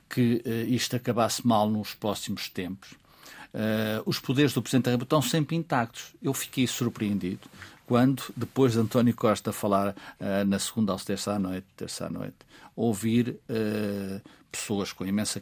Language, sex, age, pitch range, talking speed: Portuguese, male, 50-69, 115-160 Hz, 160 wpm